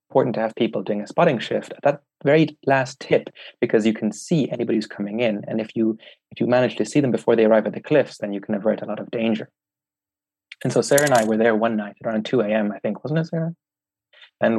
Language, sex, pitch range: English, male, 105-125 Hz